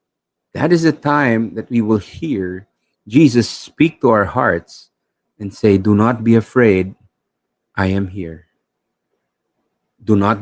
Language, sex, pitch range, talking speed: English, male, 95-125 Hz, 140 wpm